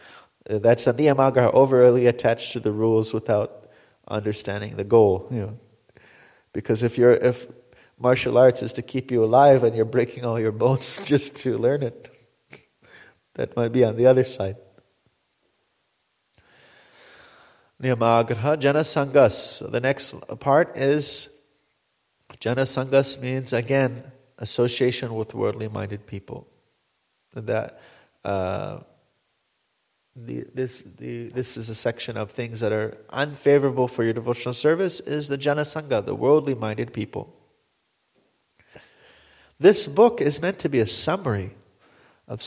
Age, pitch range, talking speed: 30-49, 115-135 Hz, 125 wpm